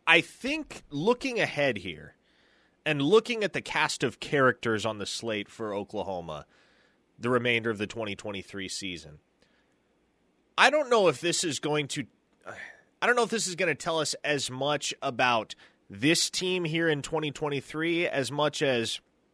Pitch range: 125-170 Hz